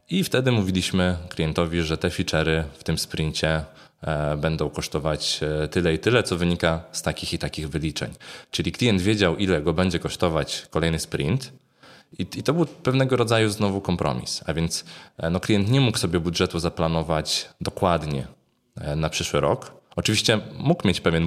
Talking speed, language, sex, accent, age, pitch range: 150 wpm, Polish, male, native, 20-39, 80-100 Hz